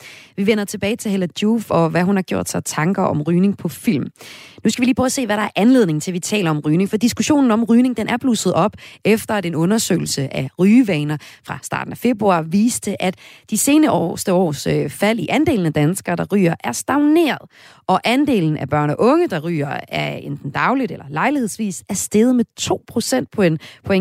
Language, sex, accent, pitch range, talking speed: Danish, female, native, 155-220 Hz, 210 wpm